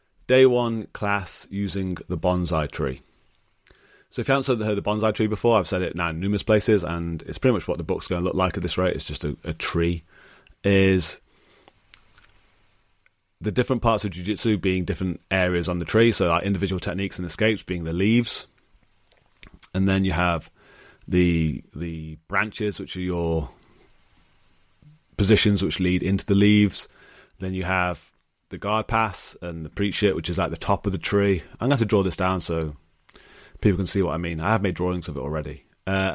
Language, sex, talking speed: English, male, 200 wpm